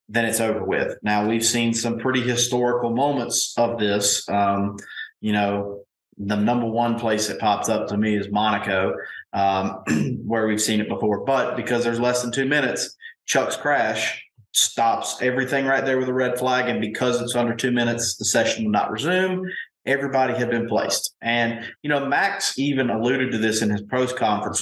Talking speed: 185 wpm